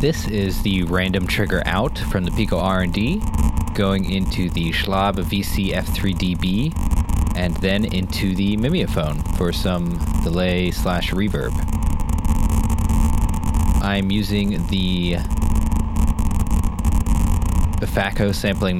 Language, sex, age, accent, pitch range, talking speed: English, male, 20-39, American, 80-95 Hz, 105 wpm